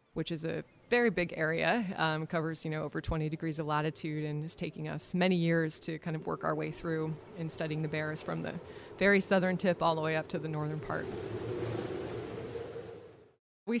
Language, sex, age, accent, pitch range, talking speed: English, female, 20-39, American, 150-165 Hz, 200 wpm